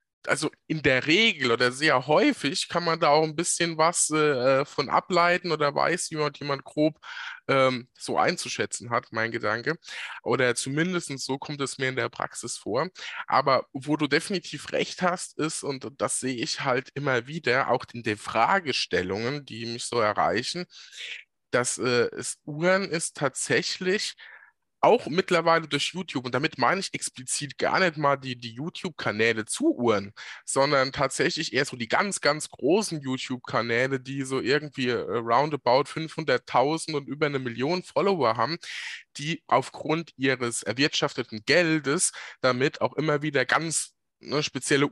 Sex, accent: male, German